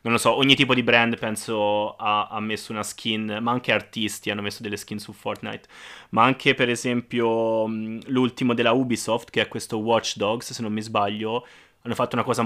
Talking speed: 200 wpm